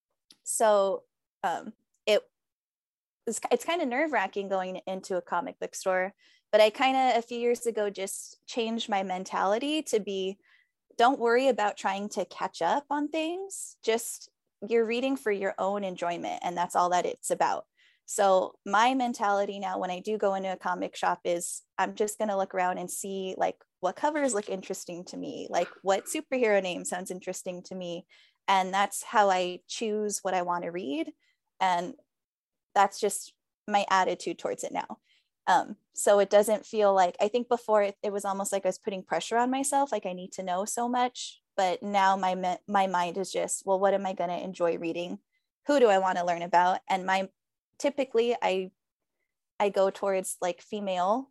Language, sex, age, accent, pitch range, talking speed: English, female, 10-29, American, 185-245 Hz, 185 wpm